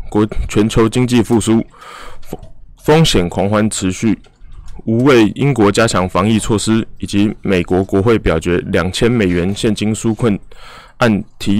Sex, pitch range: male, 95-115 Hz